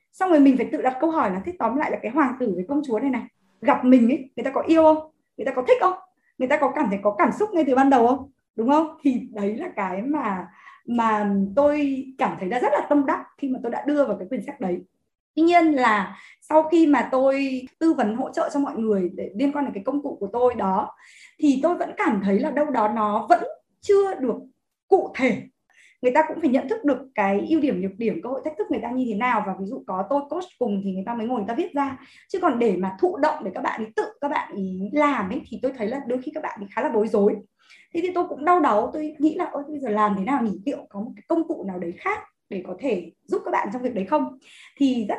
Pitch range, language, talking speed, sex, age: 220-305 Hz, Vietnamese, 280 wpm, female, 20-39